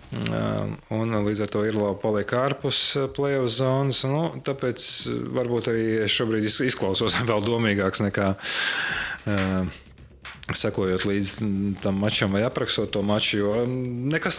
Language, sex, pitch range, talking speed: English, male, 100-135 Hz, 130 wpm